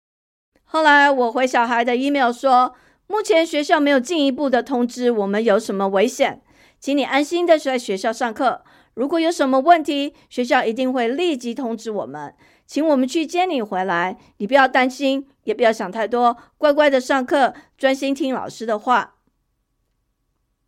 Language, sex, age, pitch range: Chinese, female, 50-69, 230-305 Hz